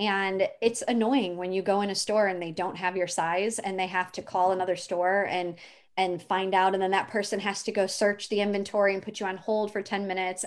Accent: American